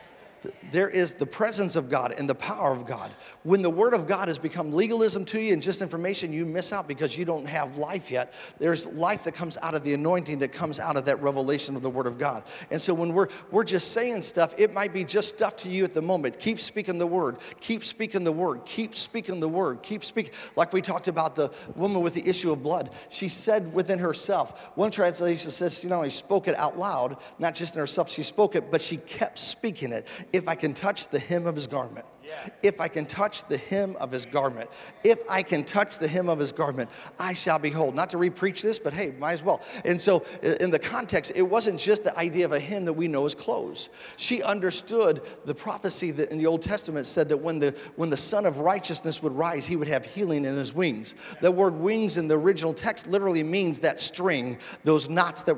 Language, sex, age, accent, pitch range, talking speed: English, male, 50-69, American, 155-195 Hz, 235 wpm